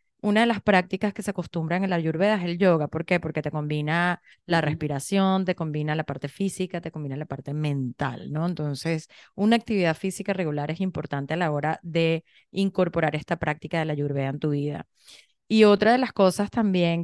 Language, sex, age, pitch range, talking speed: Spanish, female, 20-39, 160-195 Hz, 200 wpm